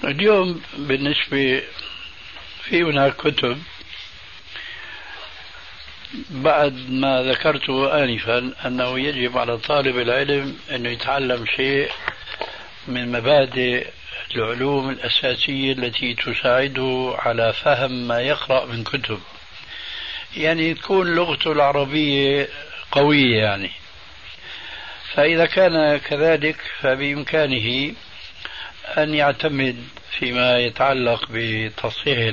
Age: 60-79